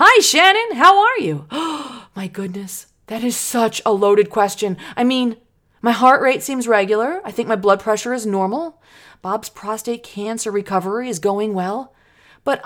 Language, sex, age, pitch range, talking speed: English, female, 30-49, 170-255 Hz, 165 wpm